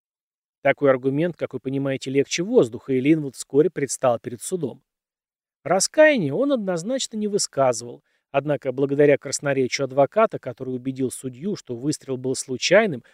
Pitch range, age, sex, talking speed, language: 130-170 Hz, 30-49, male, 130 wpm, Russian